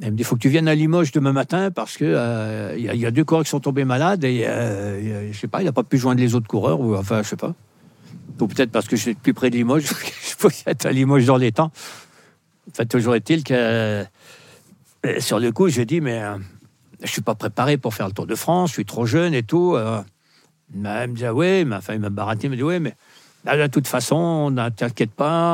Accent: French